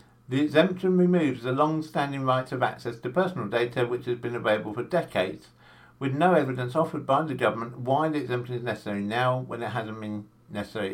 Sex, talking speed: male, 190 wpm